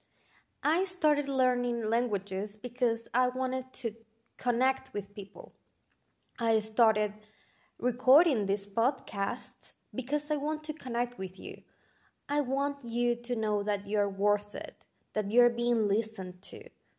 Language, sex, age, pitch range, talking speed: English, female, 20-39, 220-265 Hz, 130 wpm